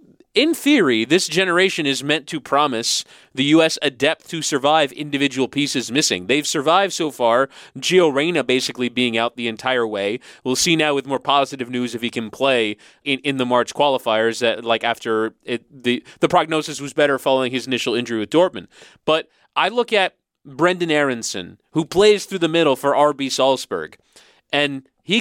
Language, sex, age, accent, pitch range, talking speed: English, male, 30-49, American, 135-200 Hz, 180 wpm